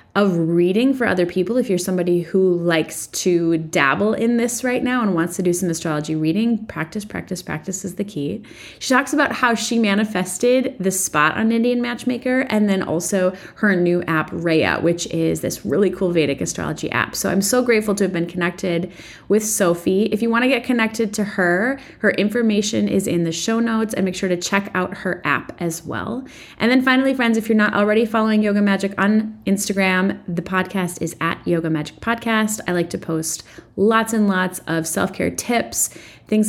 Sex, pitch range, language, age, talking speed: female, 180-225 Hz, English, 20-39, 195 wpm